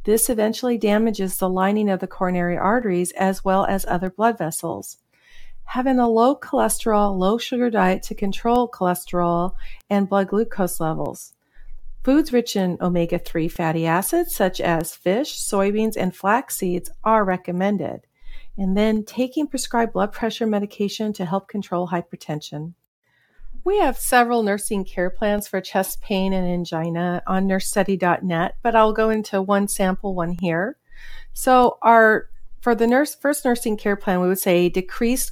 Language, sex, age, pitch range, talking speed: English, female, 50-69, 180-220 Hz, 150 wpm